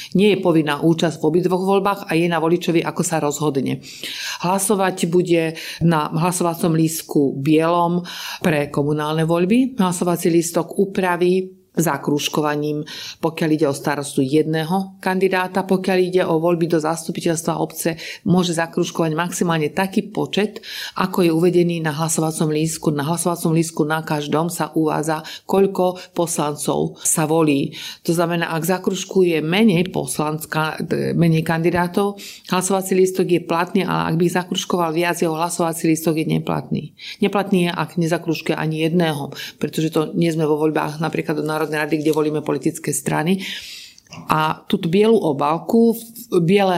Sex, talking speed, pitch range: female, 140 wpm, 160-185 Hz